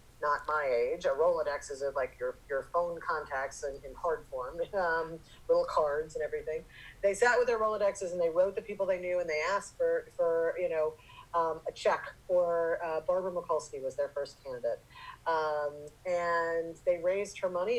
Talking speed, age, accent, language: 190 wpm, 40-59, American, English